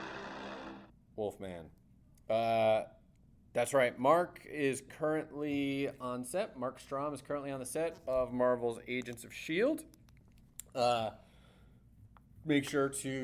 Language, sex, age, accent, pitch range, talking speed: English, male, 30-49, American, 105-145 Hz, 115 wpm